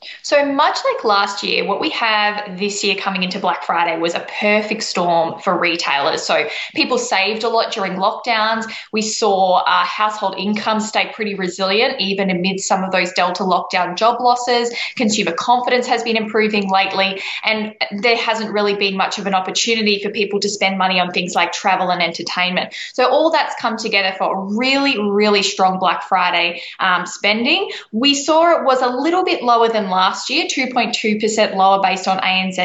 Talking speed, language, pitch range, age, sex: 185 wpm, English, 190-235 Hz, 10-29, female